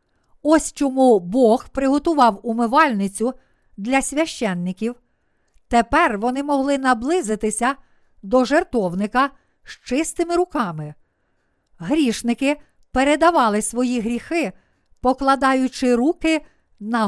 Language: Ukrainian